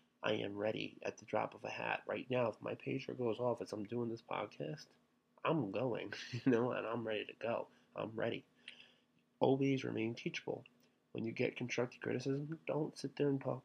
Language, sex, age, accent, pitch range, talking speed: English, male, 20-39, American, 105-130 Hz, 200 wpm